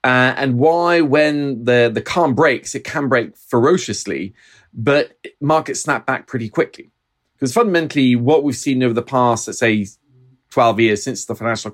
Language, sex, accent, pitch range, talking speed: English, male, British, 115-140 Hz, 170 wpm